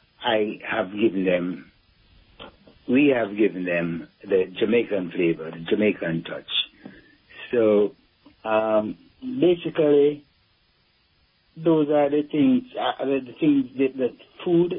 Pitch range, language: 110-155 Hz, English